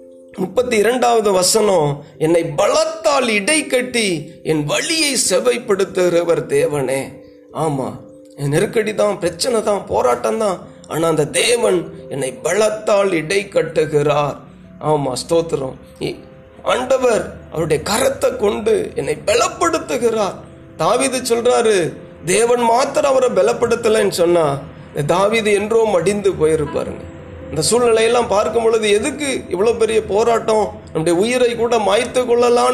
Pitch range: 165-240 Hz